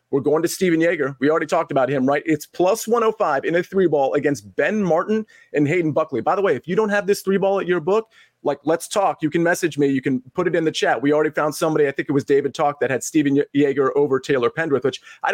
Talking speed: 275 wpm